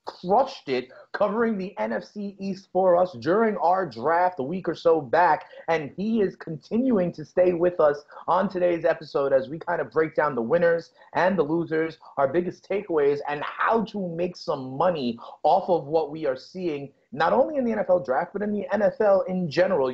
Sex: male